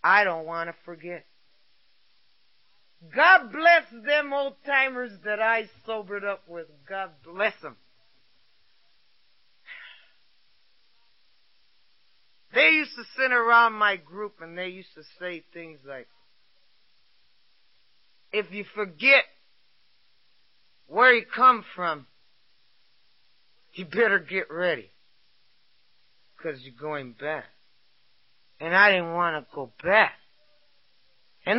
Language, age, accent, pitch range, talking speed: English, 60-79, American, 170-245 Hz, 105 wpm